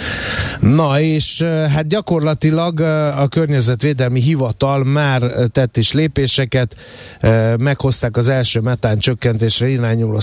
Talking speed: 100 wpm